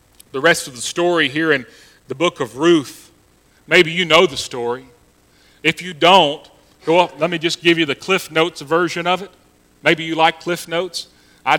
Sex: male